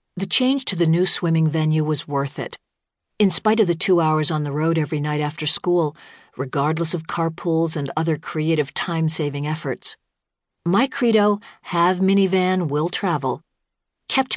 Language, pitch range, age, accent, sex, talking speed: English, 150-185 Hz, 50-69, American, female, 160 wpm